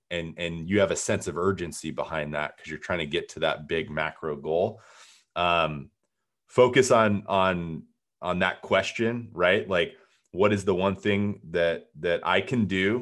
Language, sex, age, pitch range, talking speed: English, male, 30-49, 80-100 Hz, 180 wpm